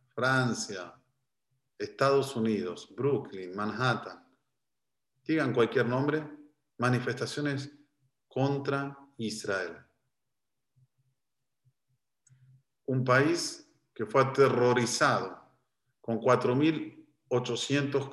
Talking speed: 60 wpm